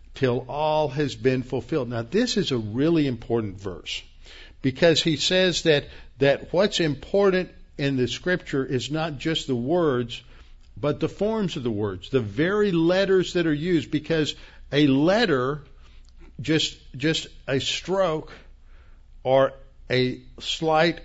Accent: American